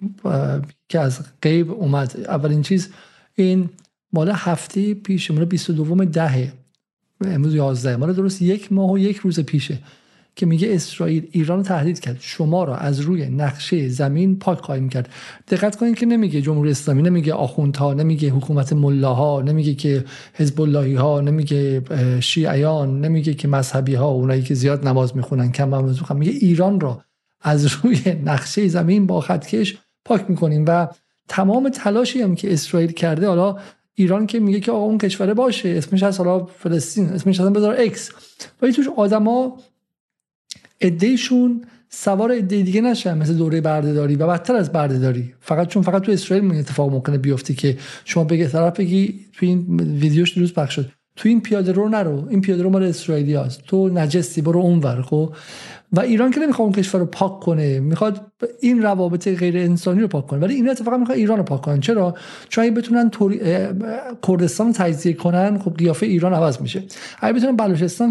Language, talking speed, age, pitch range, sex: Persian, 170 wpm, 50-69, 150-200 Hz, male